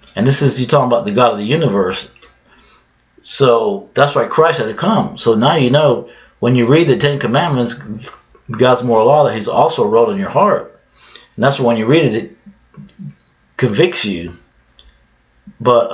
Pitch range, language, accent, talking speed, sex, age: 110-140 Hz, English, American, 180 wpm, male, 50-69